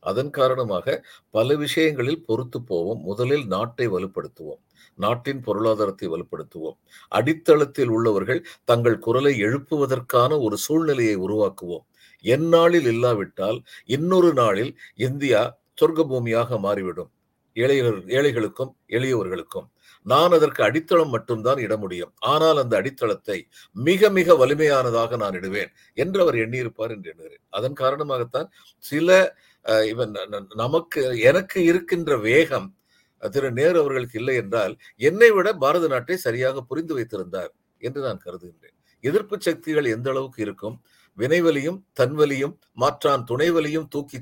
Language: Tamil